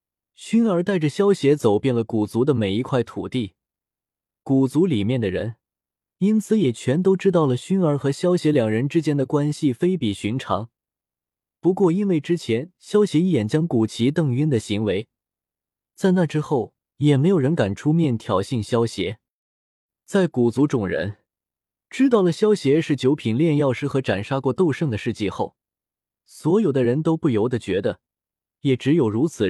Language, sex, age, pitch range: Chinese, male, 20-39, 115-165 Hz